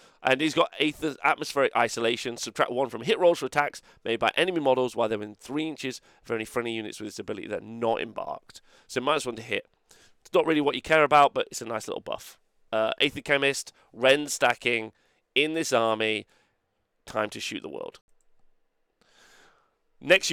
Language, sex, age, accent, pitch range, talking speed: English, male, 40-59, British, 120-160 Hz, 195 wpm